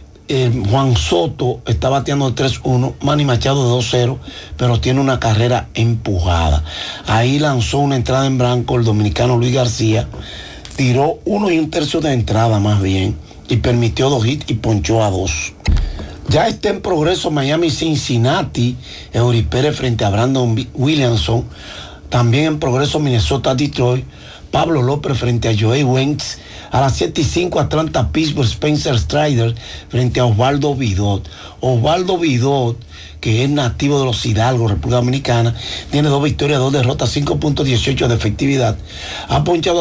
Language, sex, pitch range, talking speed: Spanish, male, 115-145 Hz, 145 wpm